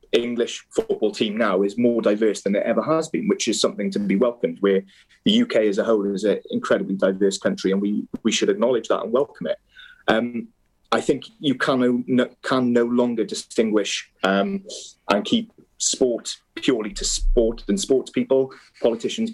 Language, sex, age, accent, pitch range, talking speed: English, male, 30-49, British, 100-125 Hz, 180 wpm